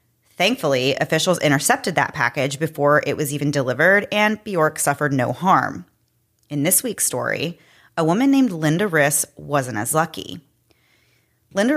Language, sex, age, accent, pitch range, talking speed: English, female, 30-49, American, 140-175 Hz, 145 wpm